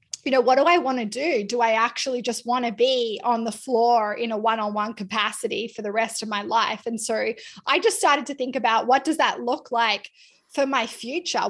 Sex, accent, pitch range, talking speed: female, Australian, 230-285 Hz, 230 wpm